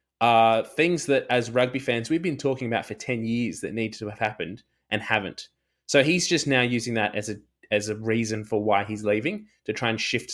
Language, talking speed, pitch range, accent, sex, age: English, 225 wpm, 110-125 Hz, Australian, male, 20-39